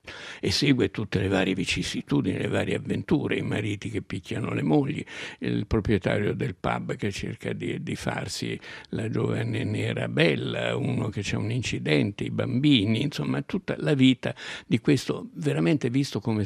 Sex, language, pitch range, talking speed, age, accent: male, Italian, 100-135 Hz, 160 wpm, 60-79, native